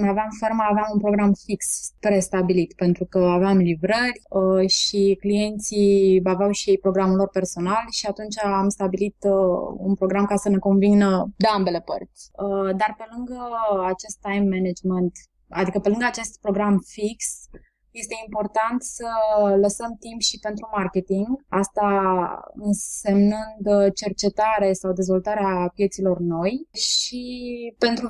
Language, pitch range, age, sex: Romanian, 195-220 Hz, 20-39, female